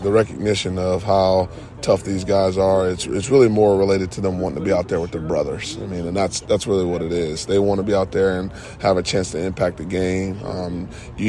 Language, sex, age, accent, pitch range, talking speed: English, male, 20-39, American, 95-110 Hz, 250 wpm